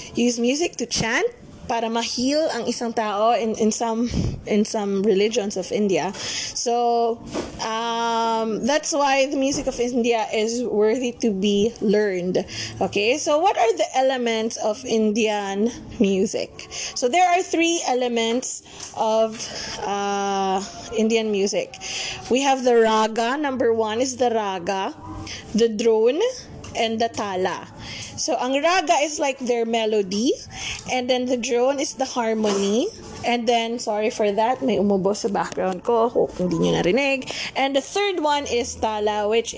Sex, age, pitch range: female, 20-39, 210-260 Hz